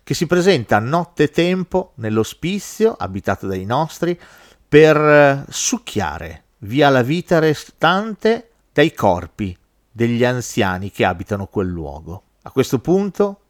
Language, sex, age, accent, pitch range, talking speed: Italian, male, 40-59, native, 105-160 Hz, 125 wpm